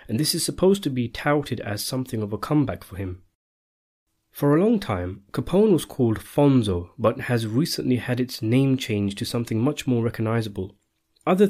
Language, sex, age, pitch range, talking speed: English, male, 30-49, 105-130 Hz, 185 wpm